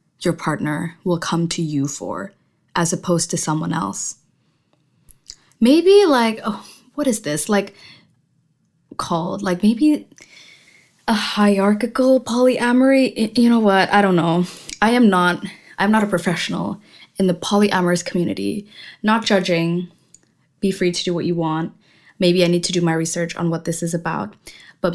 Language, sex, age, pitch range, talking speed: English, female, 20-39, 165-205 Hz, 155 wpm